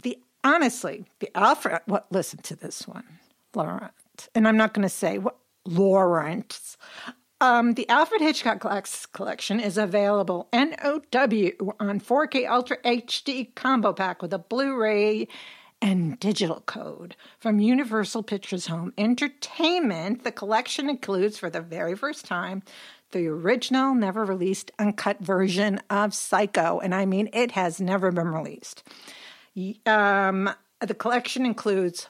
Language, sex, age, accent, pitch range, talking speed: English, female, 50-69, American, 195-250 Hz, 135 wpm